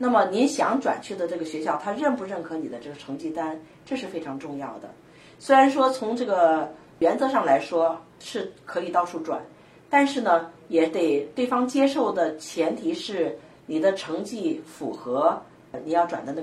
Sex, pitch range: female, 160-235 Hz